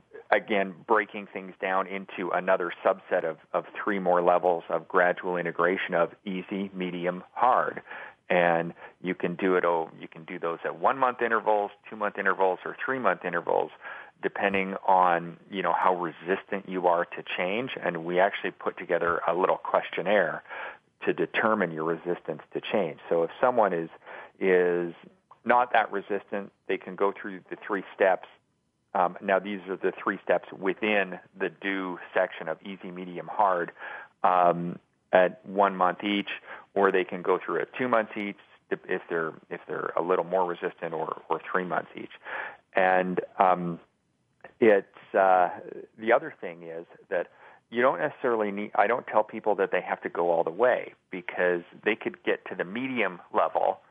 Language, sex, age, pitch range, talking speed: English, male, 40-59, 90-100 Hz, 170 wpm